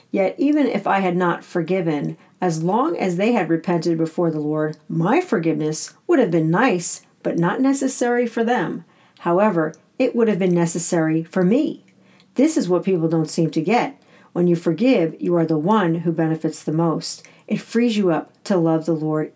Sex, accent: female, American